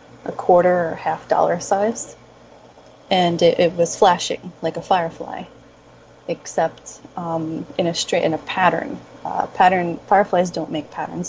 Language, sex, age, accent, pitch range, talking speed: English, female, 30-49, American, 165-195 Hz, 150 wpm